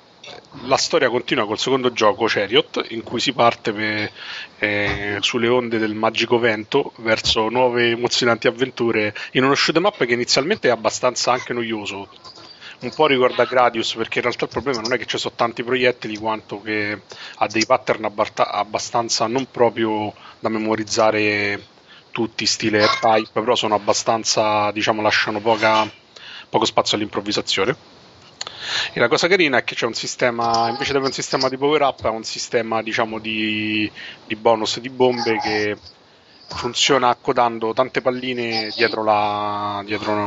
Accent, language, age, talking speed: native, Italian, 30-49, 150 wpm